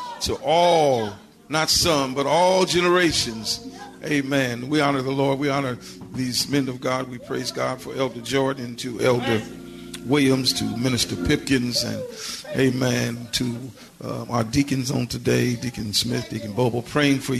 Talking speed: 150 wpm